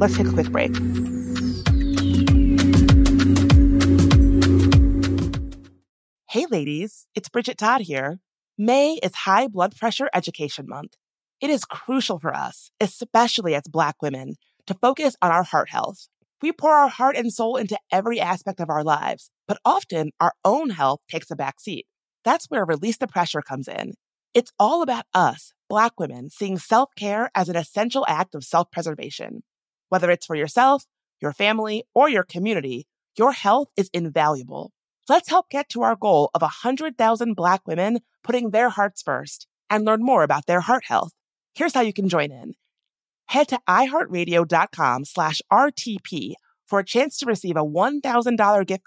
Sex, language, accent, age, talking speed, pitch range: female, English, American, 30-49, 155 wpm, 150-240 Hz